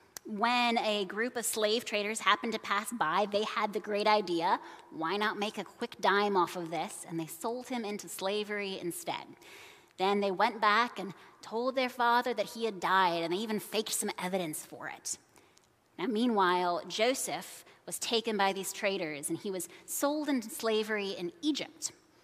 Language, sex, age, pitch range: English, female, 20-39, 190-240 Hz